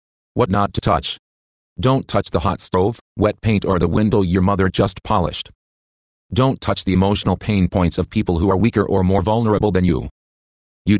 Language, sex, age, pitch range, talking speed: English, male, 40-59, 75-105 Hz, 190 wpm